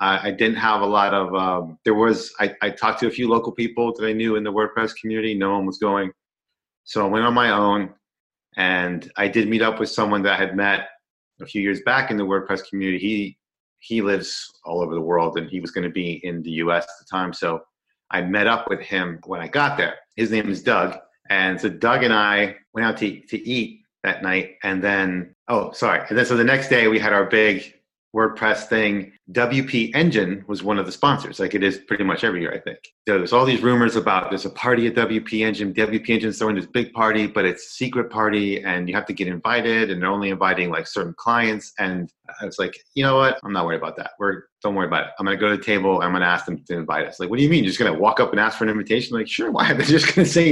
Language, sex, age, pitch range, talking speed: English, male, 30-49, 95-115 Hz, 260 wpm